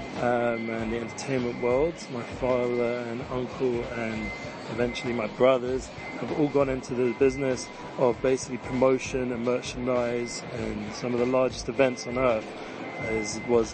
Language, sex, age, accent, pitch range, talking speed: English, male, 30-49, British, 120-140 Hz, 150 wpm